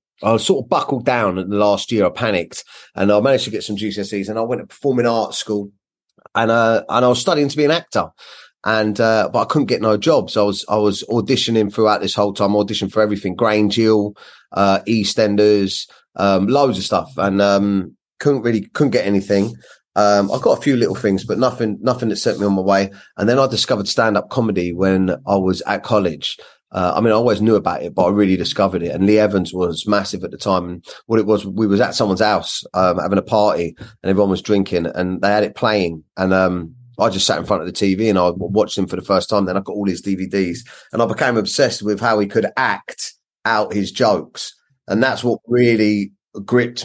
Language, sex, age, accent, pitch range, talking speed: English, male, 30-49, British, 95-110 Hz, 235 wpm